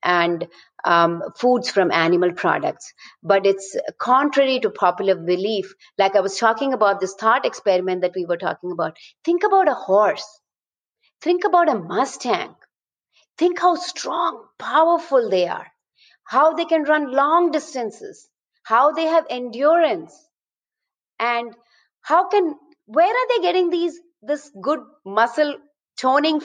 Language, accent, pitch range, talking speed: English, Indian, 205-340 Hz, 140 wpm